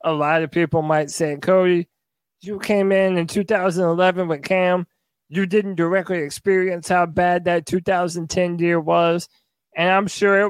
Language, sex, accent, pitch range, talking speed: English, male, American, 175-215 Hz, 160 wpm